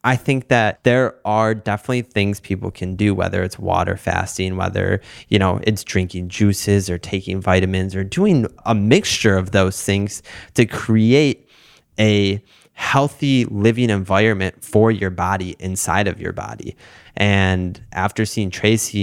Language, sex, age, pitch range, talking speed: English, male, 20-39, 95-115 Hz, 150 wpm